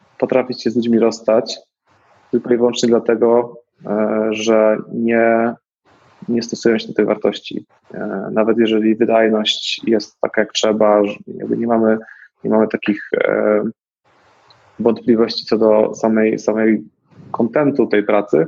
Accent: native